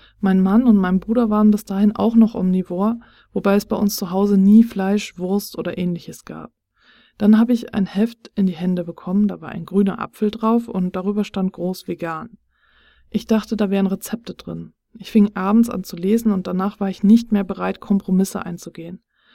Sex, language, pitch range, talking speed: female, German, 185-215 Hz, 200 wpm